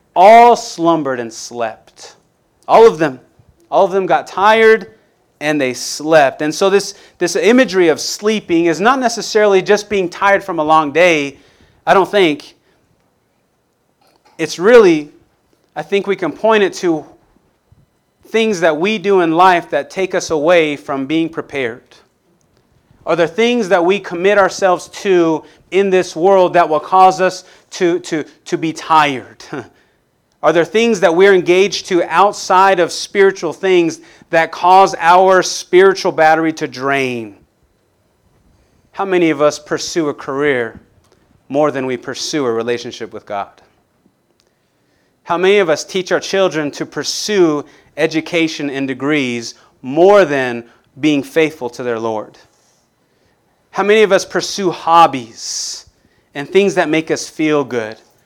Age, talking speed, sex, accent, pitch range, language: 30-49, 145 wpm, male, American, 145-195 Hz, English